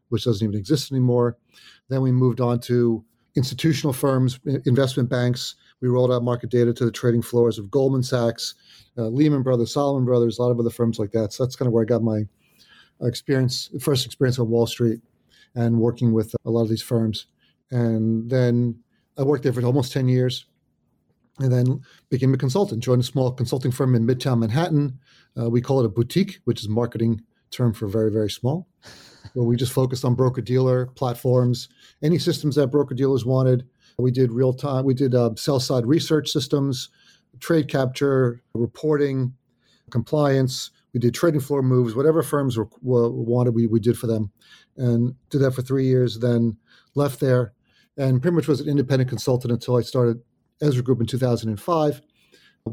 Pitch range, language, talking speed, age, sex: 120-135 Hz, English, 190 wpm, 40-59, male